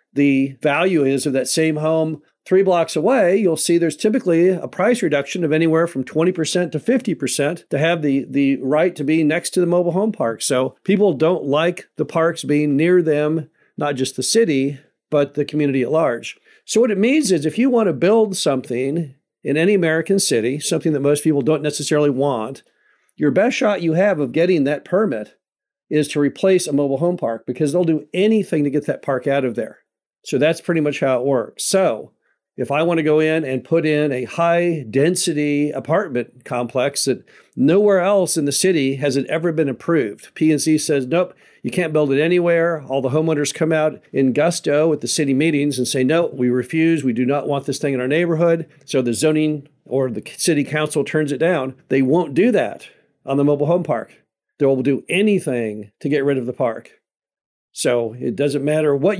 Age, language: 50-69, English